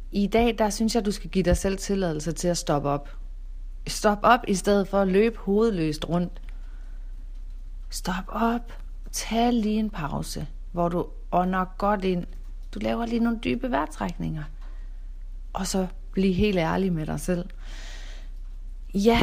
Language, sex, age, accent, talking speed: Danish, female, 40-59, native, 155 wpm